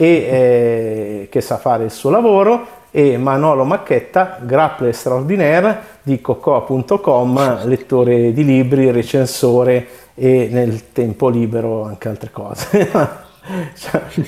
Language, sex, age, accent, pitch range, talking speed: Italian, male, 50-69, native, 120-180 Hz, 115 wpm